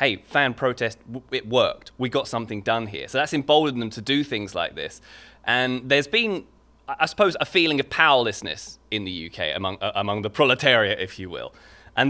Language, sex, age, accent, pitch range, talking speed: English, male, 20-39, British, 110-145 Hz, 195 wpm